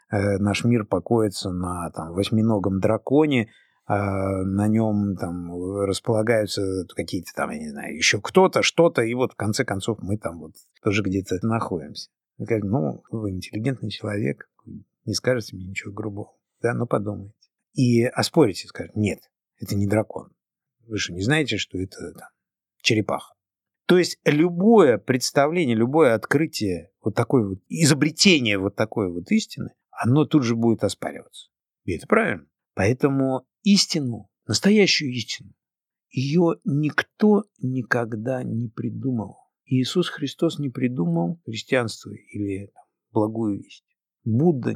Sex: male